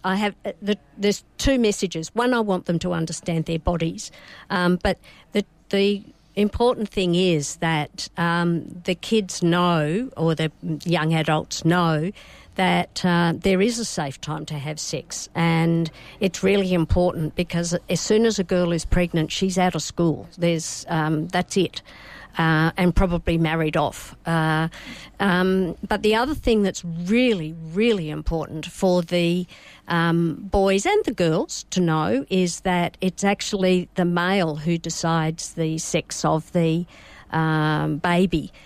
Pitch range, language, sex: 160-185 Hz, English, female